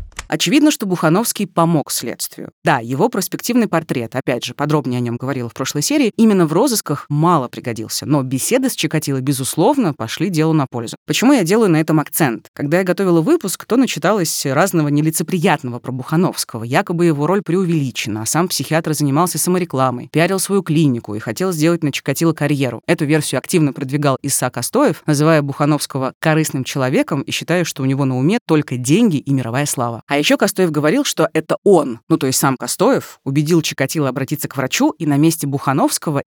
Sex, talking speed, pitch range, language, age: female, 180 wpm, 140-175 Hz, Russian, 30-49